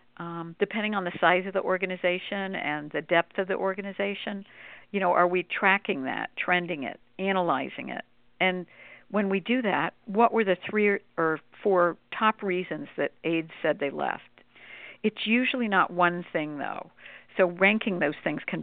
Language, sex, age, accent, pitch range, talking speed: English, female, 60-79, American, 170-200 Hz, 170 wpm